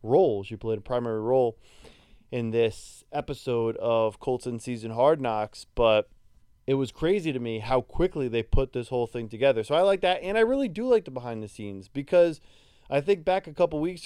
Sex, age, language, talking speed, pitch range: male, 20-39, English, 210 wpm, 115-150 Hz